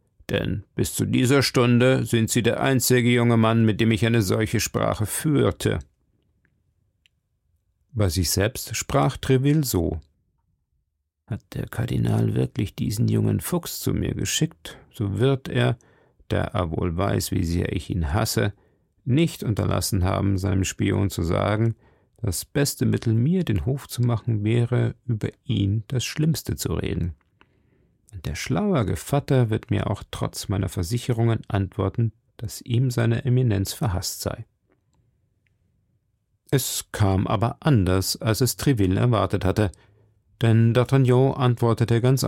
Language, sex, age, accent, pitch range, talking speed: German, male, 50-69, German, 100-125 Hz, 140 wpm